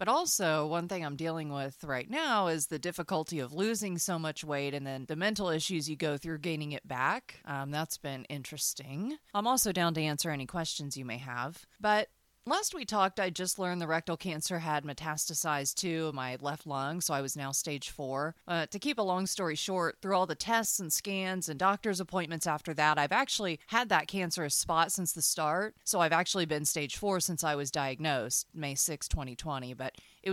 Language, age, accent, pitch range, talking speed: English, 30-49, American, 150-190 Hz, 210 wpm